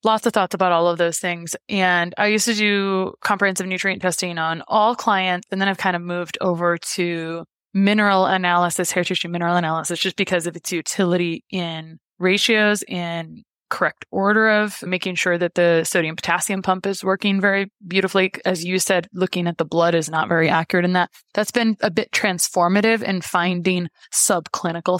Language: English